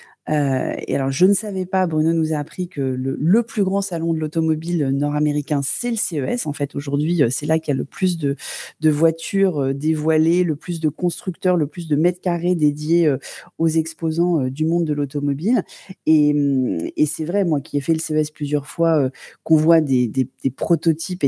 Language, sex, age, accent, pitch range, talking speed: French, female, 30-49, French, 145-180 Hz, 200 wpm